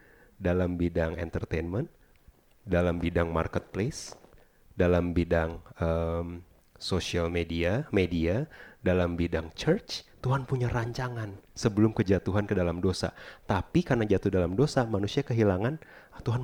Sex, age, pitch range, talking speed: male, 30-49, 90-125 Hz, 115 wpm